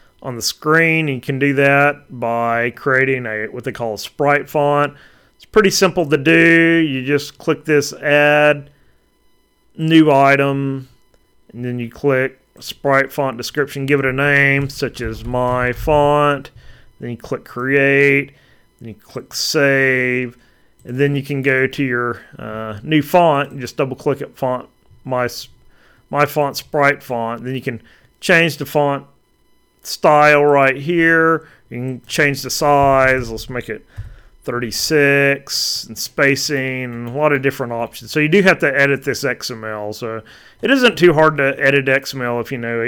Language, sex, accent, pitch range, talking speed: English, male, American, 115-145 Hz, 160 wpm